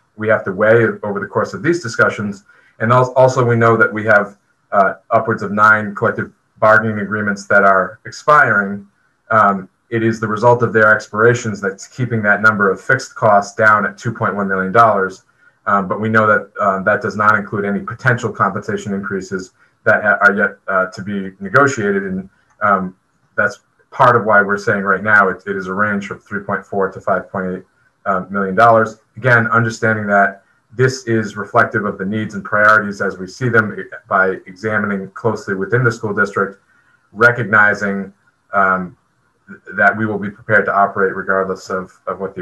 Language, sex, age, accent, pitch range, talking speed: English, male, 30-49, American, 100-120 Hz, 175 wpm